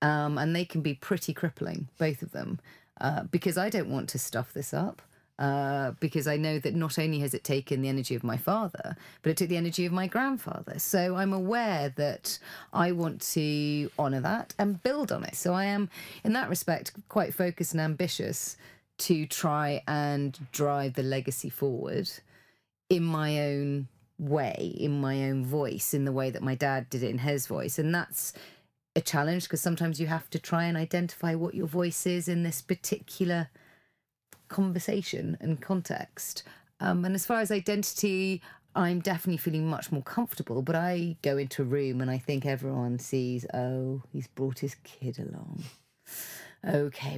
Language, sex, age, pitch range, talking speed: English, female, 30-49, 135-180 Hz, 180 wpm